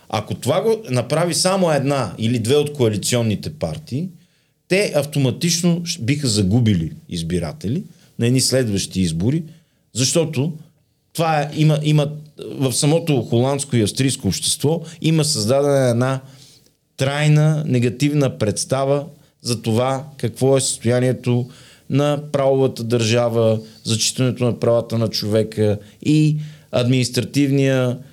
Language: Bulgarian